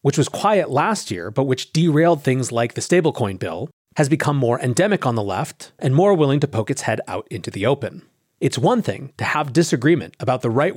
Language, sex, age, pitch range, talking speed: English, male, 30-49, 125-185 Hz, 225 wpm